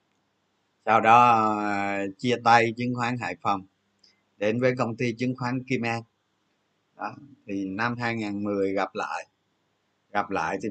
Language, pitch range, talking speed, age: Vietnamese, 105-135 Hz, 140 wpm, 20-39